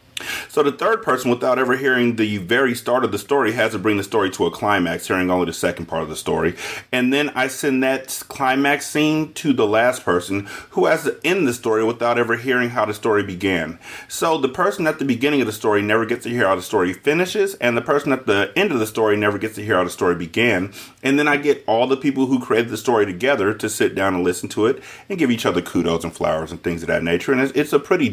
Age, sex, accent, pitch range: 30-49, male, American, 95-130 Hz